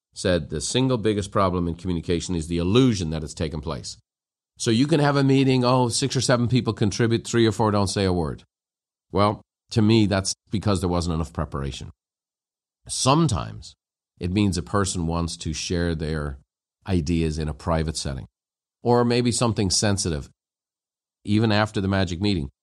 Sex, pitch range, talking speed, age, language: male, 90-125 Hz, 170 wpm, 50-69, English